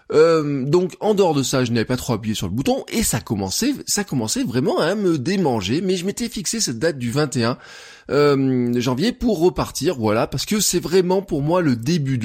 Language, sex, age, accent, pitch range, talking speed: French, male, 20-39, French, 120-185 Hz, 220 wpm